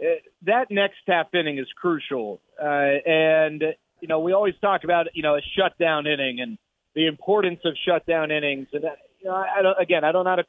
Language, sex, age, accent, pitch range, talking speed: English, male, 30-49, American, 155-185 Hz, 190 wpm